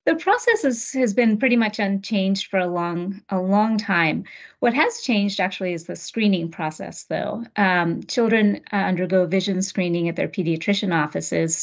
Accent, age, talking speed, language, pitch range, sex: American, 30-49, 165 wpm, English, 170-205 Hz, female